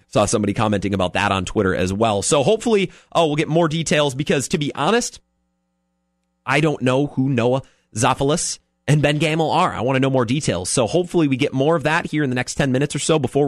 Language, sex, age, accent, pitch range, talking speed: English, male, 30-49, American, 110-150 Hz, 230 wpm